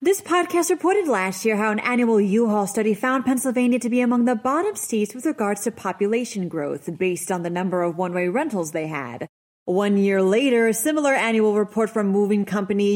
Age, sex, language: 30-49, female, English